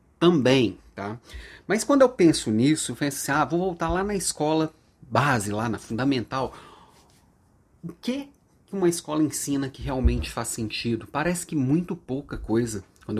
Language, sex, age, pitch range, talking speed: Portuguese, male, 30-49, 110-165 Hz, 160 wpm